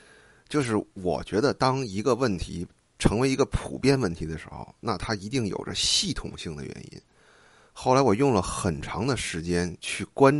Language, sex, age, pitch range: Chinese, male, 30-49, 95-125 Hz